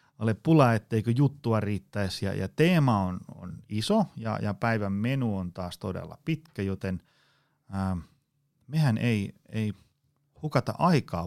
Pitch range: 105-145 Hz